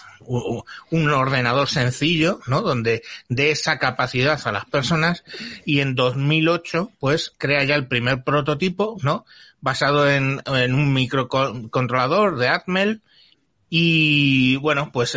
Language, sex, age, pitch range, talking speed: Spanish, male, 30-49, 115-145 Hz, 125 wpm